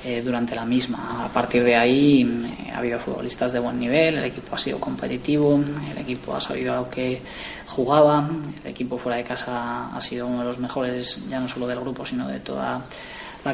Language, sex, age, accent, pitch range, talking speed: Spanish, female, 20-39, Spanish, 125-135 Hz, 205 wpm